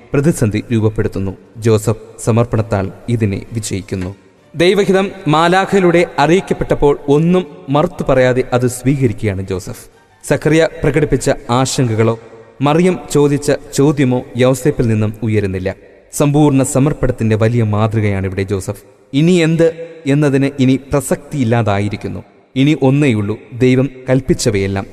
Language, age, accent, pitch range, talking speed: English, 30-49, Indian, 110-145 Hz, 95 wpm